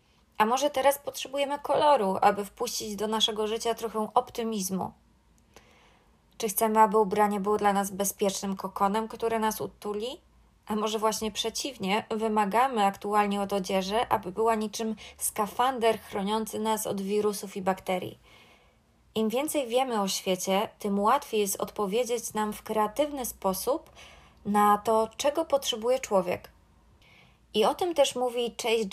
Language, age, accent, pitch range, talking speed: Polish, 20-39, native, 200-235 Hz, 135 wpm